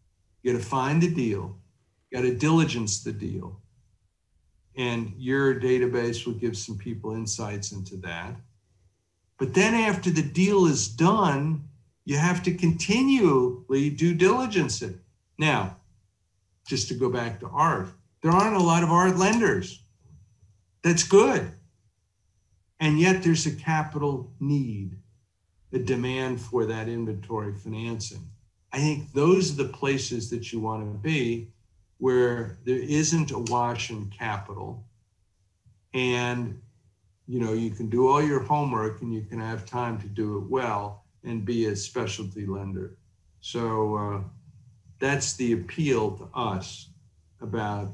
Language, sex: English, male